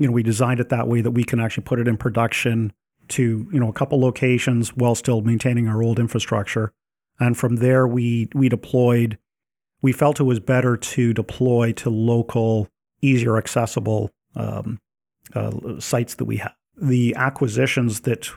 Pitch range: 115-125 Hz